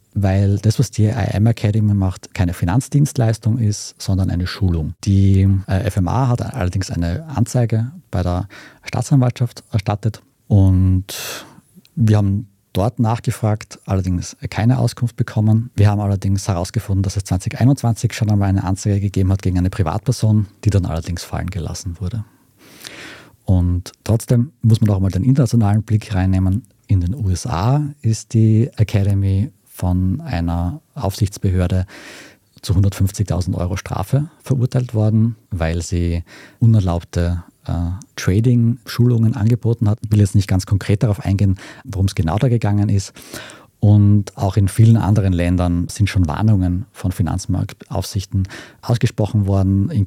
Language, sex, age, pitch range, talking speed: German, male, 50-69, 95-115 Hz, 135 wpm